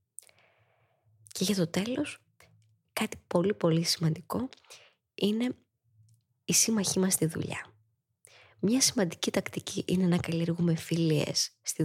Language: Greek